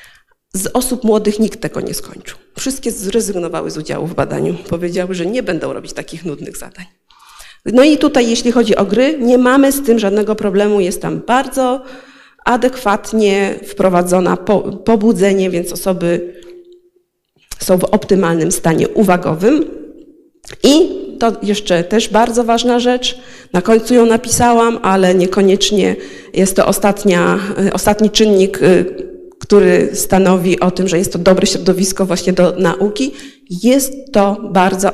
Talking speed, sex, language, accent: 135 wpm, female, Polish, native